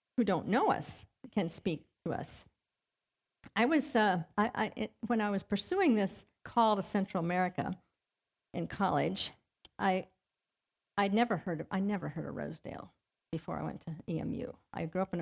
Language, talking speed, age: English, 170 wpm, 50-69